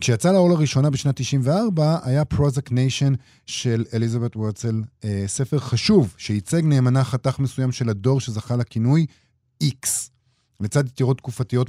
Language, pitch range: Hebrew, 110-140 Hz